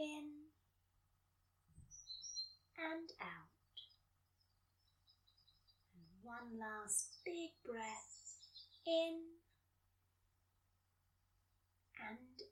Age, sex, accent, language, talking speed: 20-39, female, British, English, 50 wpm